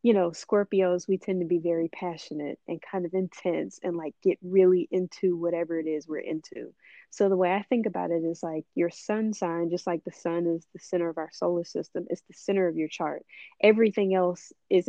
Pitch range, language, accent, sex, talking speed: 165-195 Hz, English, American, female, 220 wpm